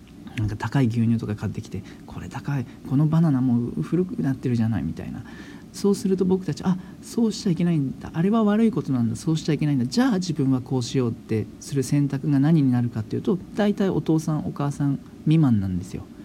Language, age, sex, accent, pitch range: Japanese, 40-59, male, native, 115-165 Hz